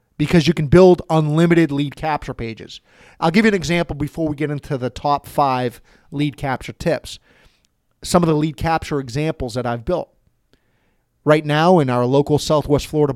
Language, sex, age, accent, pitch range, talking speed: English, male, 30-49, American, 140-175 Hz, 180 wpm